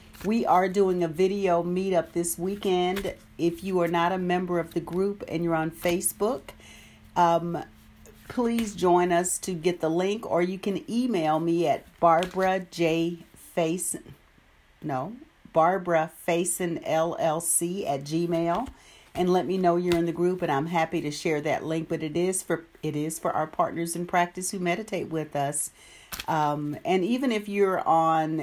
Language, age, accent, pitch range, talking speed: English, 50-69, American, 160-190 Hz, 170 wpm